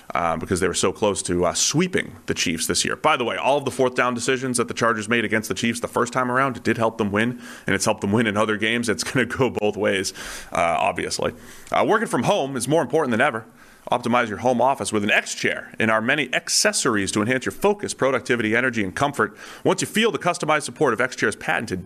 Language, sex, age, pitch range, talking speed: English, male, 30-49, 110-135 Hz, 245 wpm